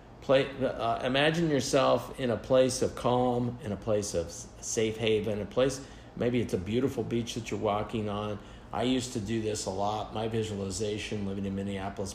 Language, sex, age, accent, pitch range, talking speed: English, male, 50-69, American, 110-140 Hz, 190 wpm